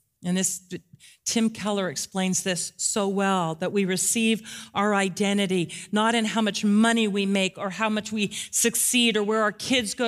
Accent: American